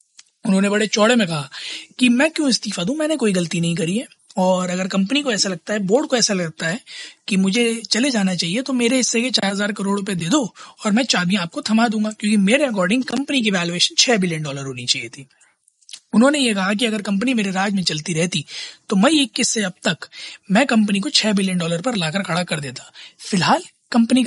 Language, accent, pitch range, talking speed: Hindi, native, 185-240 Hz, 225 wpm